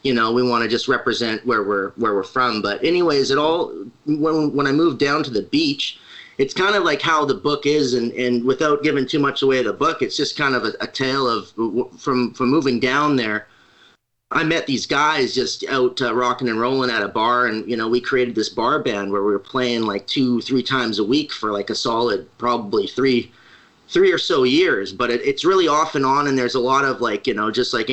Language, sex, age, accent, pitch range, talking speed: English, male, 30-49, American, 120-145 Hz, 245 wpm